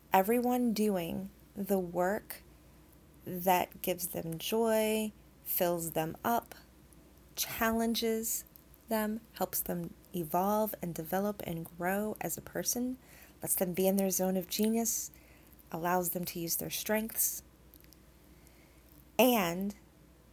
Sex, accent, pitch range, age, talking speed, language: female, American, 175-205 Hz, 30-49, 110 wpm, English